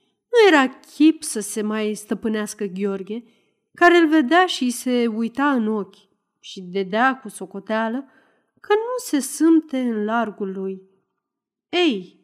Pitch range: 200-280 Hz